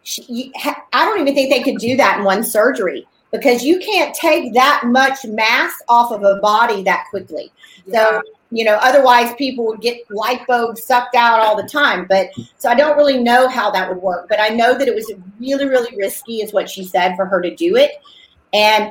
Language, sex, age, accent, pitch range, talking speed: English, female, 40-59, American, 205-265 Hz, 210 wpm